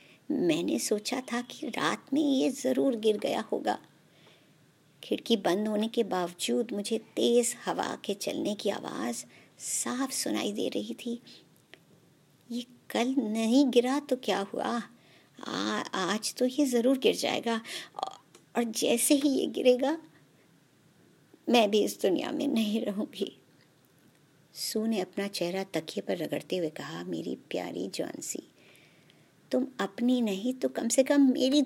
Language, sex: Hindi, male